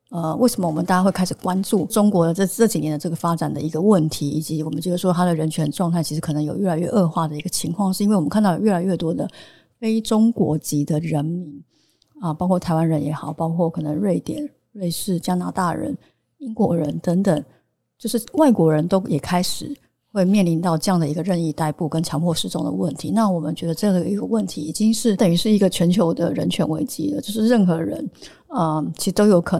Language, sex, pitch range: Chinese, female, 160-205 Hz